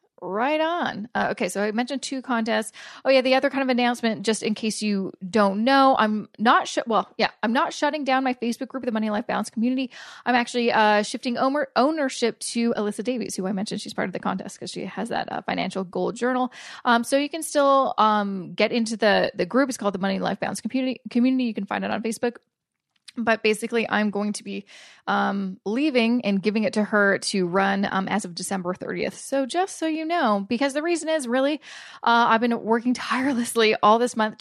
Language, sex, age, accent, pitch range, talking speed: English, female, 20-39, American, 200-255 Hz, 220 wpm